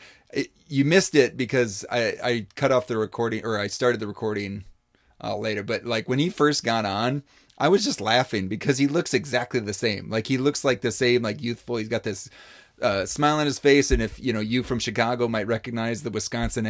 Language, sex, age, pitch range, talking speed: English, male, 30-49, 115-155 Hz, 220 wpm